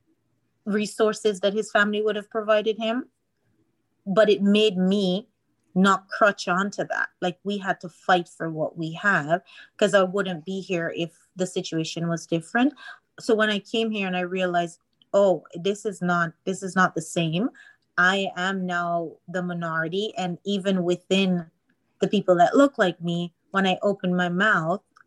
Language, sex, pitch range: English, female, 170-200 Hz